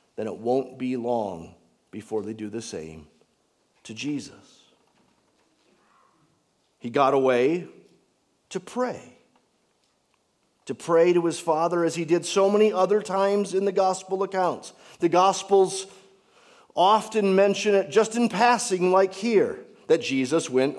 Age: 50-69